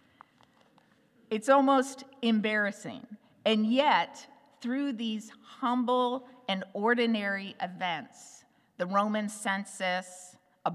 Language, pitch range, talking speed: English, 195-245 Hz, 85 wpm